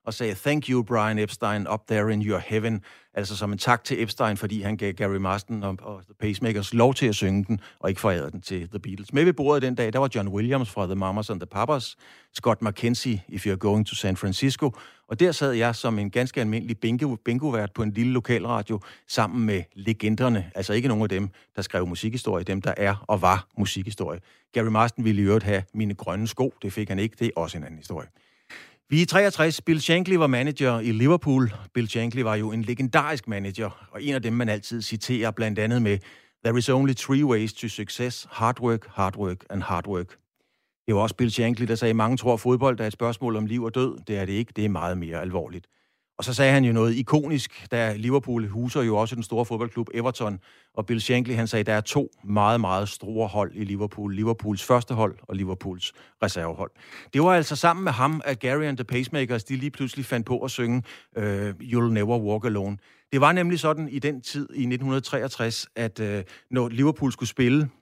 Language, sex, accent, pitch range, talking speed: Danish, male, native, 105-125 Hz, 225 wpm